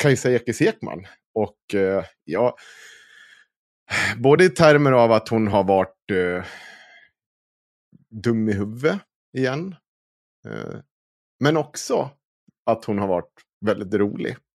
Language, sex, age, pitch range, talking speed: Swedish, male, 30-49, 90-115 Hz, 110 wpm